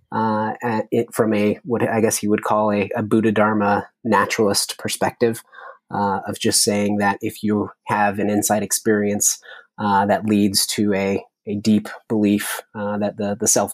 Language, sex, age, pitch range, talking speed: English, male, 30-49, 100-110 Hz, 175 wpm